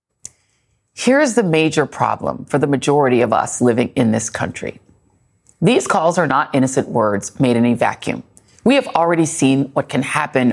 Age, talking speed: 30-49, 170 wpm